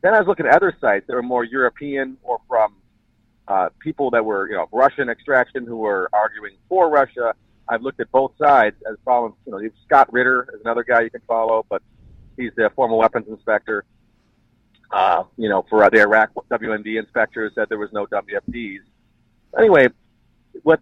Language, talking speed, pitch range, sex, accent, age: English, 185 wpm, 115-150 Hz, male, American, 40-59